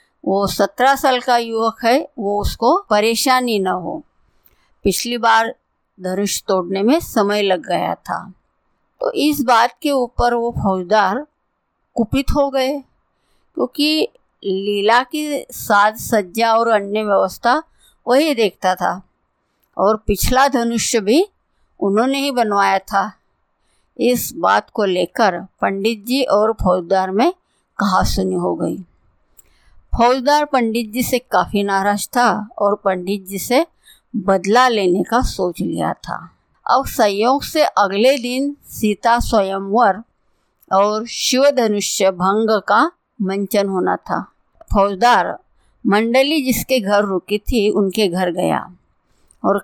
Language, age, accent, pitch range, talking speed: Hindi, 50-69, native, 200-255 Hz, 125 wpm